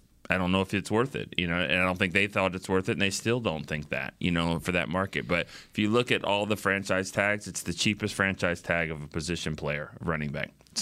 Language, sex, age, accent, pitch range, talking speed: English, male, 30-49, American, 85-105 Hz, 275 wpm